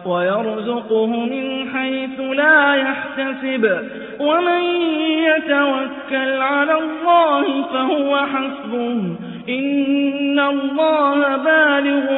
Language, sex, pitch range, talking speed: Arabic, male, 235-280 Hz, 70 wpm